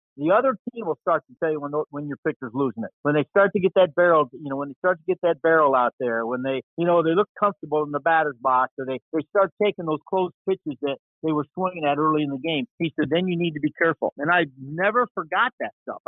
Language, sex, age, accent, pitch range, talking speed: English, male, 50-69, American, 155-225 Hz, 275 wpm